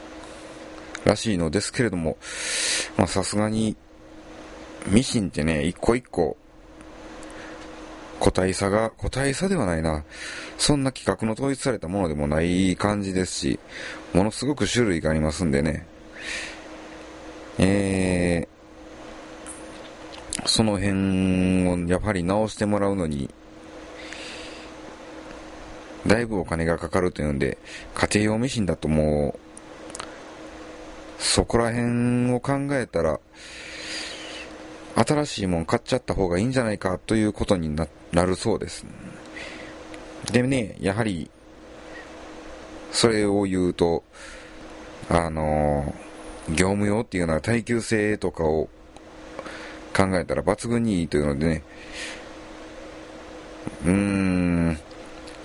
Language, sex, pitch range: Japanese, male, 80-110 Hz